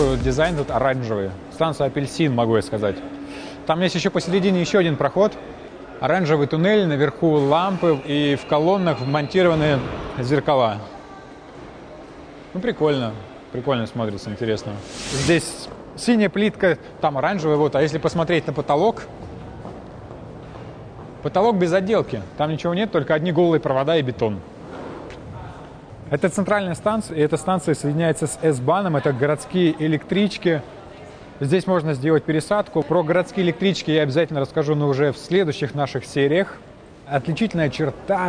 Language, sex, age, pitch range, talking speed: Russian, male, 20-39, 140-175 Hz, 130 wpm